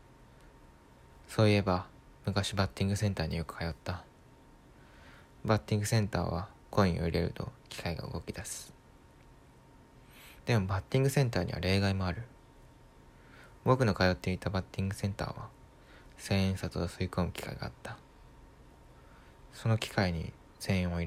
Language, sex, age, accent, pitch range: Japanese, male, 20-39, native, 90-110 Hz